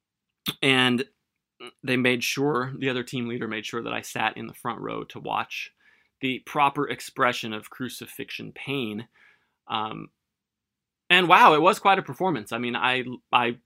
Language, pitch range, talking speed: English, 115-145 Hz, 165 wpm